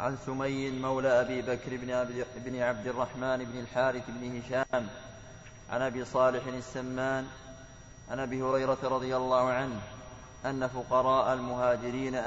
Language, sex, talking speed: Arabic, male, 120 wpm